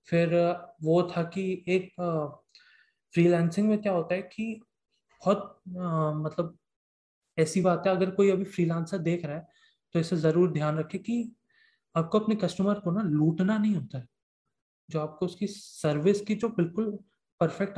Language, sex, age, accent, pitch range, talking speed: Hindi, male, 20-39, native, 160-195 Hz, 160 wpm